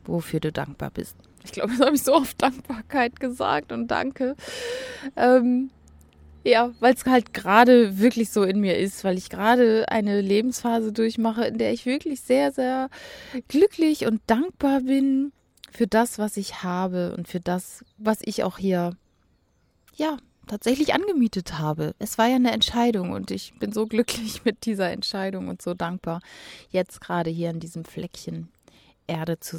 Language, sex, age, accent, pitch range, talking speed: German, female, 20-39, German, 175-240 Hz, 165 wpm